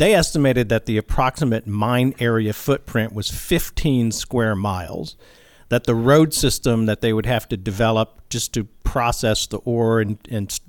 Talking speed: 165 wpm